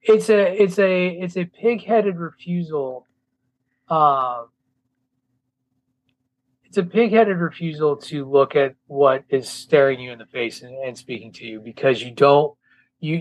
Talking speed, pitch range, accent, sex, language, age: 155 wpm, 130-165 Hz, American, male, English, 30-49